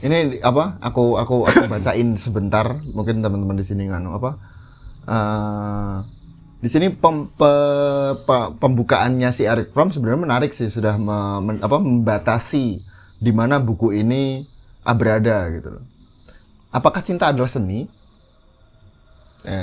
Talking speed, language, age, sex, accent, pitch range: 130 wpm, Indonesian, 20-39, male, native, 105-135 Hz